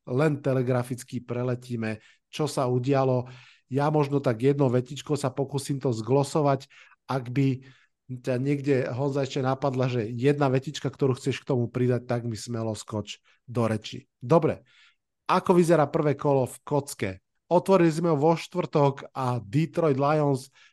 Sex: male